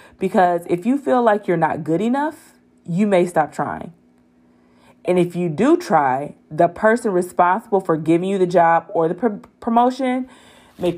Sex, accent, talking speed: female, American, 170 wpm